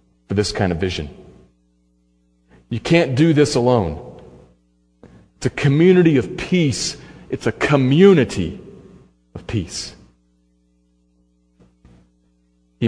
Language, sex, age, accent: English, male, 40-59, American